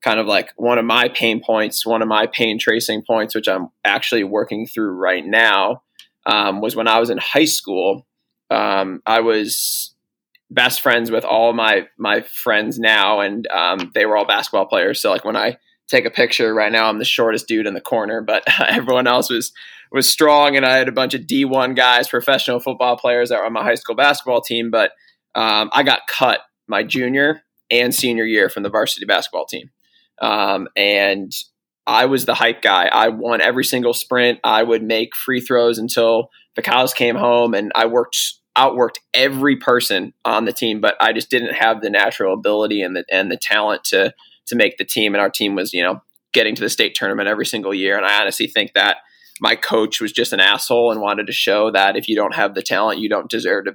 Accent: American